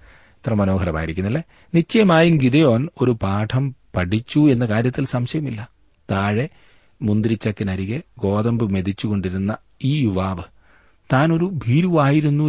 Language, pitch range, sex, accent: Malayalam, 100-130 Hz, male, native